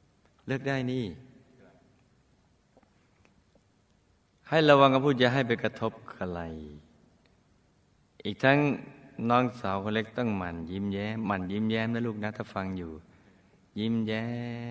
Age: 60-79